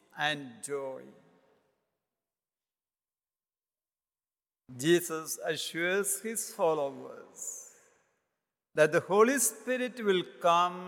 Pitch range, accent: 145-205 Hz, Indian